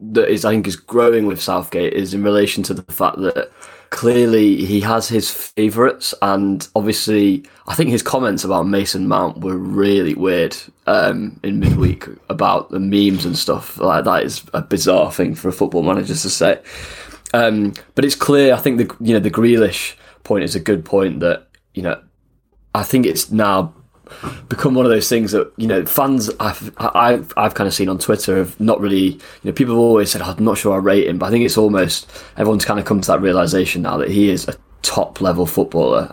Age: 20-39